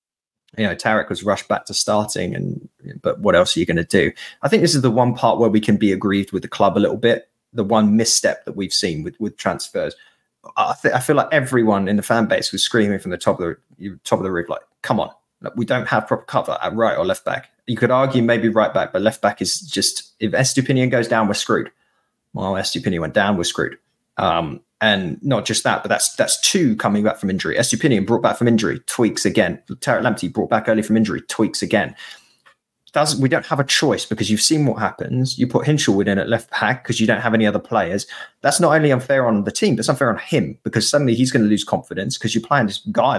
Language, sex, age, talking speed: English, male, 20-39, 245 wpm